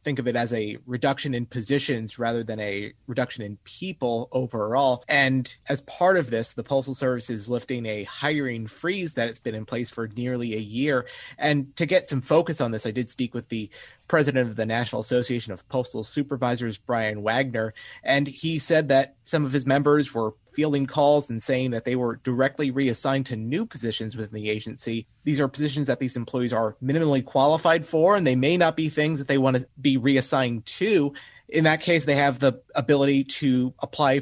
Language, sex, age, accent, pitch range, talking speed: English, male, 30-49, American, 115-140 Hz, 200 wpm